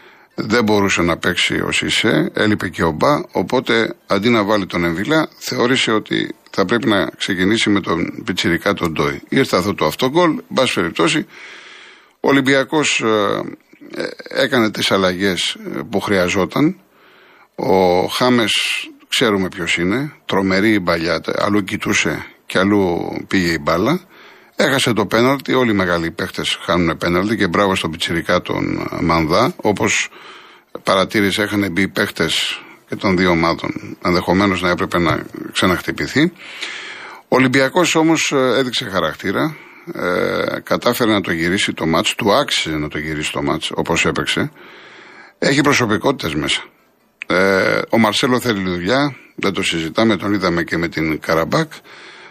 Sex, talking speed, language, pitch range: male, 140 wpm, Greek, 90-125 Hz